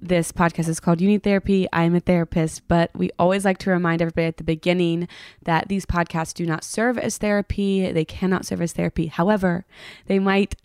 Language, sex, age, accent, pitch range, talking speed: English, female, 20-39, American, 170-225 Hz, 205 wpm